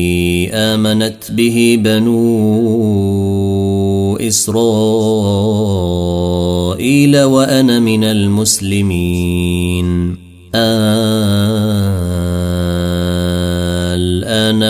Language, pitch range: Arabic, 90-115 Hz